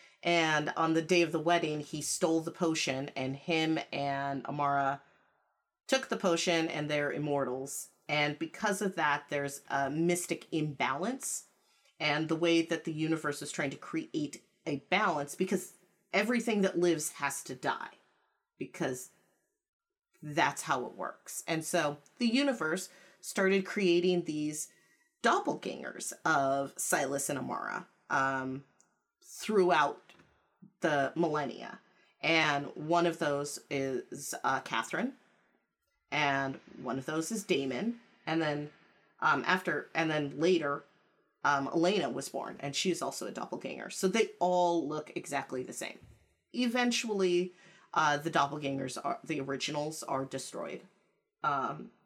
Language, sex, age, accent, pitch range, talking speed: English, female, 30-49, American, 145-180 Hz, 135 wpm